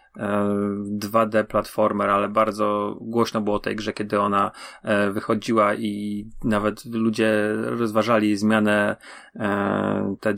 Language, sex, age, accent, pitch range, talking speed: Polish, male, 30-49, native, 105-120 Hz, 105 wpm